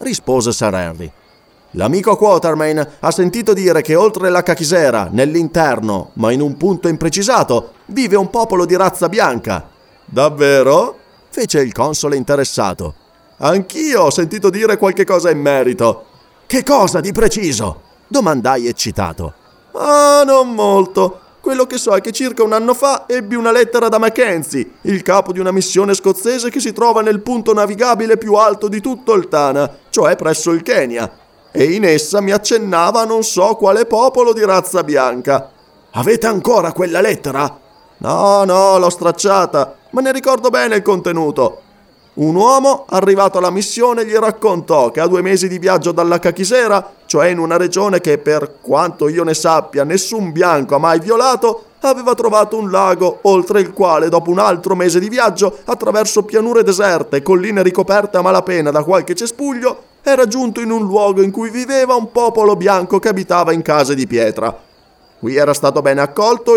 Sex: male